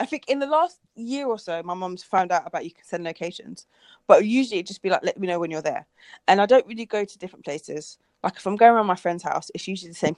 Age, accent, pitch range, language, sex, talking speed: 20-39, British, 170-235 Hz, English, female, 290 wpm